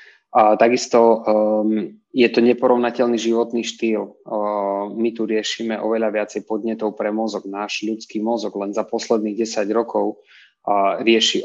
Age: 20-39